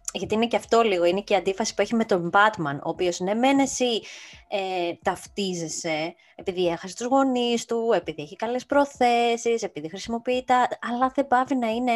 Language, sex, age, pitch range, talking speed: Greek, female, 20-39, 180-240 Hz, 185 wpm